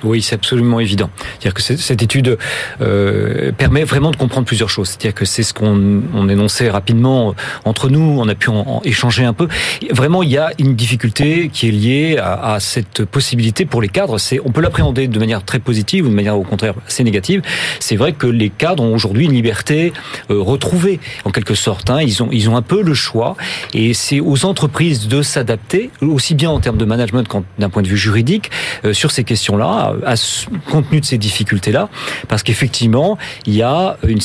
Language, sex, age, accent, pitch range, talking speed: French, male, 40-59, French, 110-145 Hz, 195 wpm